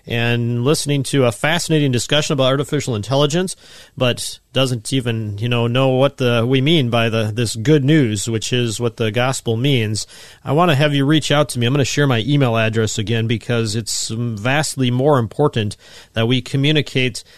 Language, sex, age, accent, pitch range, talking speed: English, male, 40-59, American, 115-150 Hz, 190 wpm